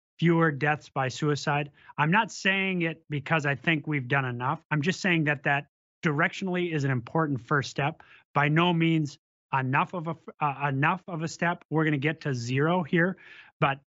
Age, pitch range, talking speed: 30-49, 140-170 Hz, 190 wpm